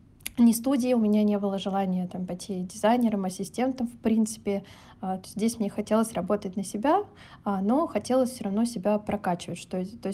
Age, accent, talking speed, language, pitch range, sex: 20-39, native, 155 wpm, Russian, 195-235 Hz, female